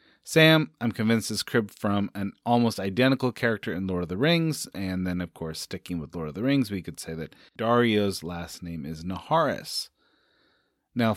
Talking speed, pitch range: 190 wpm, 90-130 Hz